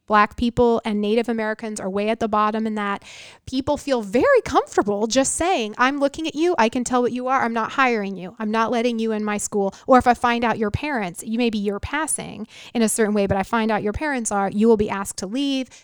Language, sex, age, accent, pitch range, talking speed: English, female, 30-49, American, 215-260 Hz, 255 wpm